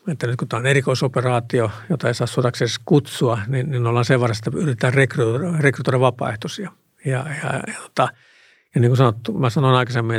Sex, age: male, 60-79